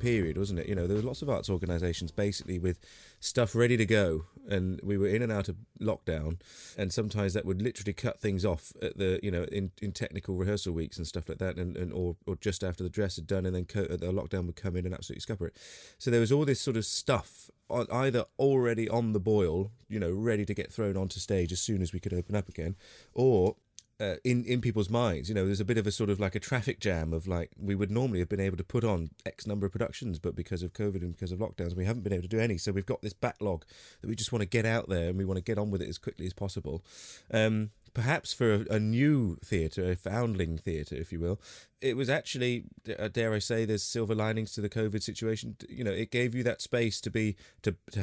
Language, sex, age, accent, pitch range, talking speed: English, male, 30-49, British, 90-110 Hz, 260 wpm